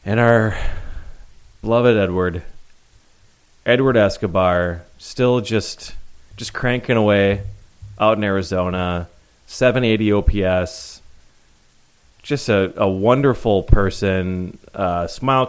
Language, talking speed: English, 95 wpm